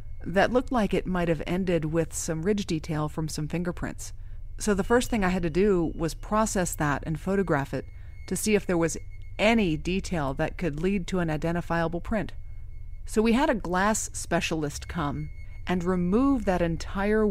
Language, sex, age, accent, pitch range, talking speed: English, female, 30-49, American, 145-190 Hz, 185 wpm